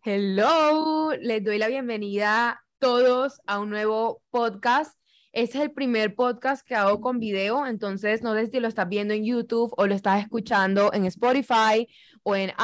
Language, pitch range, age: Spanish, 210-250 Hz, 10-29